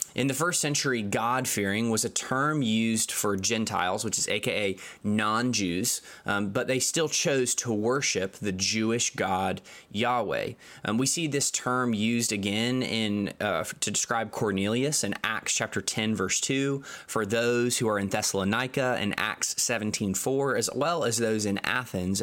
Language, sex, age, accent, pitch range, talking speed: English, male, 20-39, American, 110-140 Hz, 160 wpm